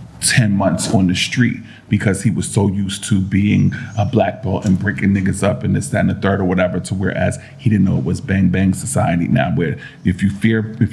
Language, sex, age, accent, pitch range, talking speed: English, male, 40-59, American, 95-110 Hz, 220 wpm